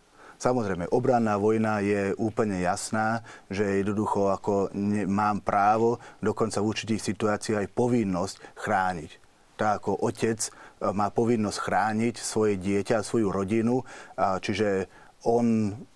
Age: 40-59